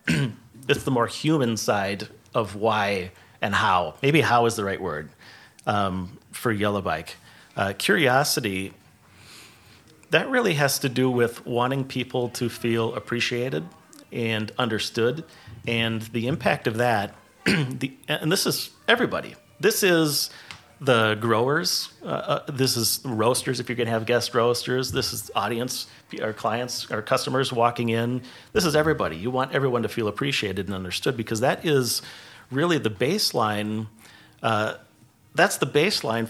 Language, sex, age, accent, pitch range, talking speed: English, male, 40-59, American, 110-135 Hz, 150 wpm